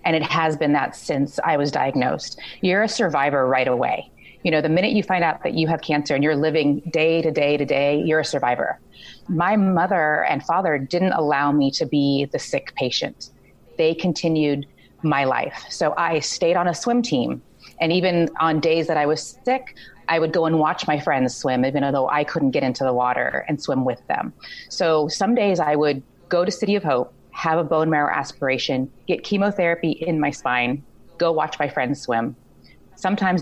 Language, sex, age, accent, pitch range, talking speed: English, female, 30-49, American, 140-170 Hz, 205 wpm